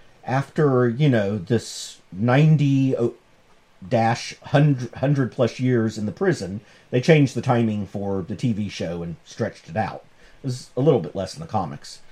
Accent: American